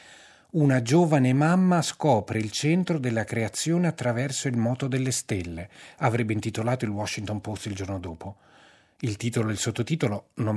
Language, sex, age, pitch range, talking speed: Italian, male, 40-59, 100-145 Hz, 155 wpm